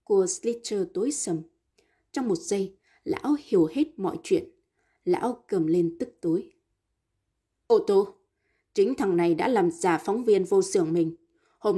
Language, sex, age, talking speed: Vietnamese, female, 20-39, 155 wpm